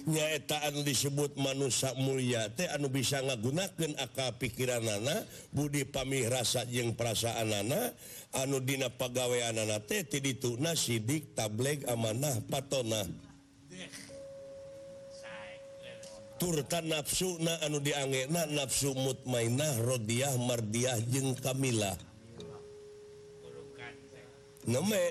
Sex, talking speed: male, 100 wpm